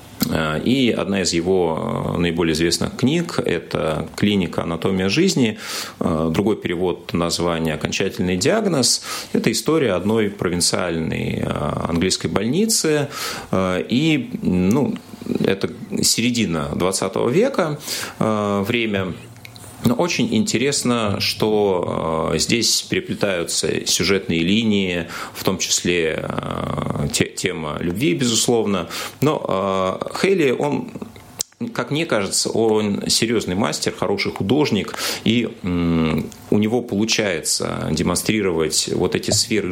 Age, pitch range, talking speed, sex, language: 30-49, 85-110 Hz, 100 wpm, male, Russian